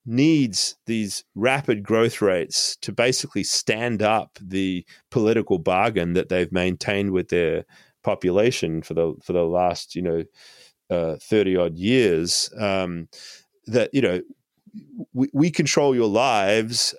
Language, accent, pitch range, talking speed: English, Australian, 95-130 Hz, 135 wpm